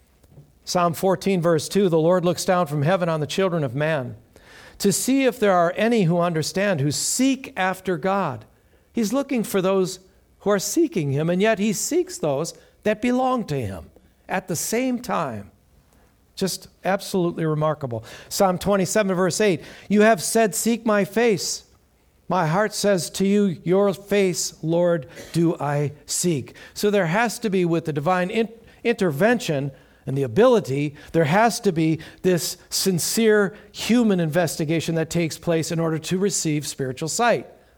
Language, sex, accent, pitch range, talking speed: English, male, American, 140-195 Hz, 160 wpm